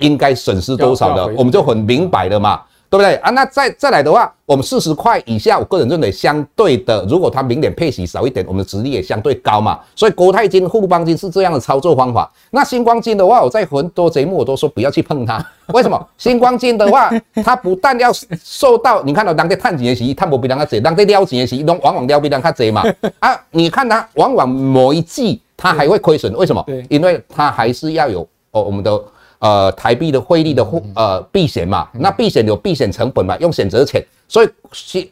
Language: Chinese